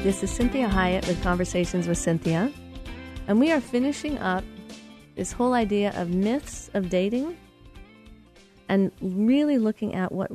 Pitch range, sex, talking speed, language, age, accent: 180-225 Hz, female, 145 wpm, English, 40-59, American